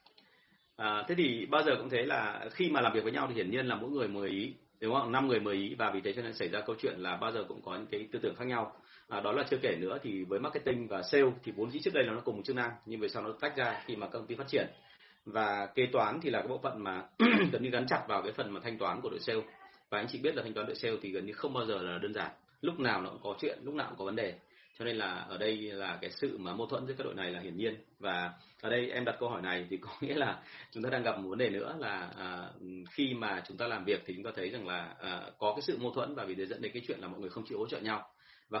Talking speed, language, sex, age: 315 wpm, Vietnamese, male, 30-49